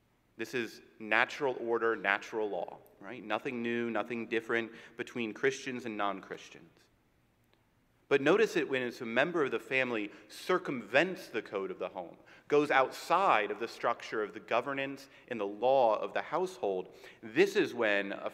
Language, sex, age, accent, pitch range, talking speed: English, male, 30-49, American, 110-140 Hz, 160 wpm